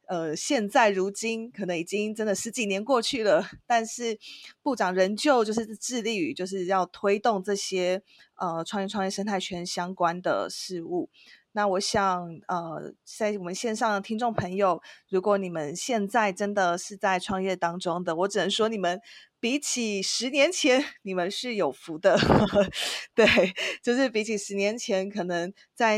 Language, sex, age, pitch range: Chinese, female, 30-49, 180-220 Hz